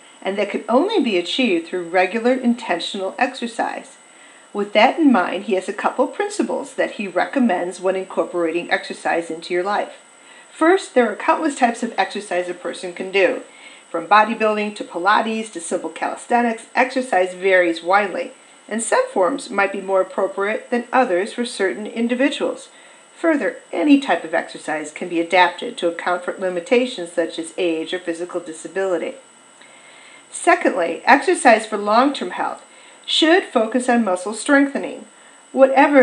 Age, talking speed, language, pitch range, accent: 40-59, 150 wpm, English, 185-255 Hz, American